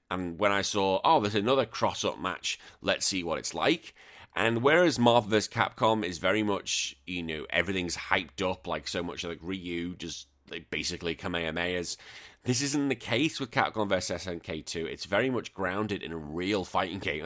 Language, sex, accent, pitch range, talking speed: English, male, British, 90-115 Hz, 185 wpm